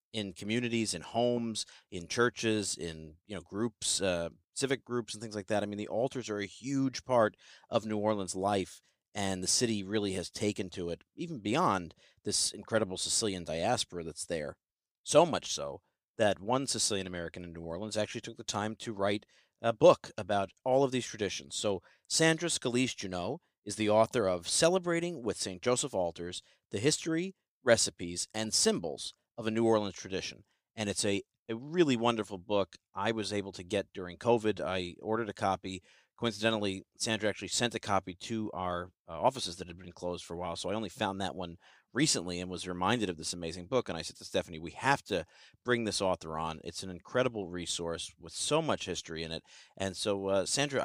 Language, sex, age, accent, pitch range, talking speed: English, male, 40-59, American, 90-120 Hz, 195 wpm